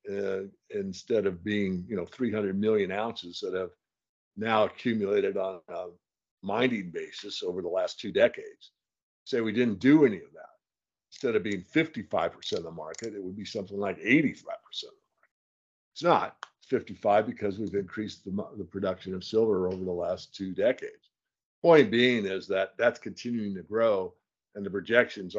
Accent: American